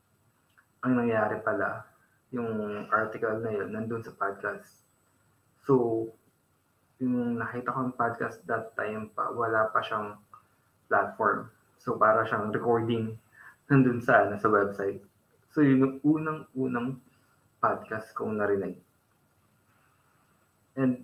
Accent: native